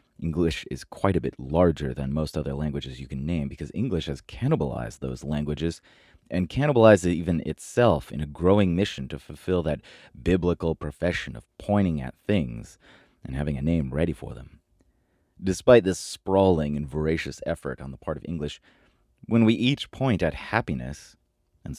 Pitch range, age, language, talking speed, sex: 75-95 Hz, 30-49, English, 170 wpm, male